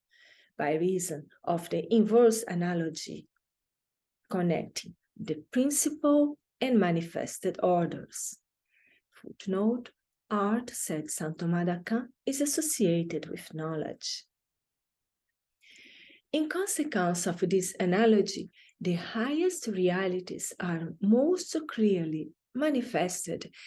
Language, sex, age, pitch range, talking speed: English, female, 40-59, 170-235 Hz, 85 wpm